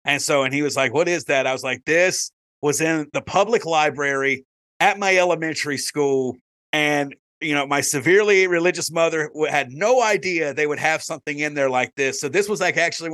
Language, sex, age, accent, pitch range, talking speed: English, male, 30-49, American, 130-175 Hz, 205 wpm